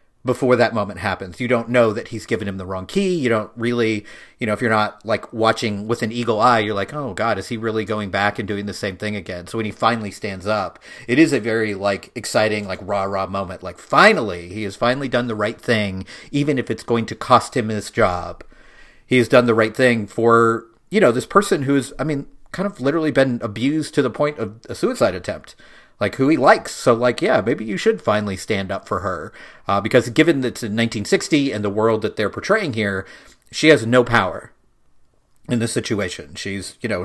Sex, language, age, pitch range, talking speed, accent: male, English, 40-59, 105-125 Hz, 230 wpm, American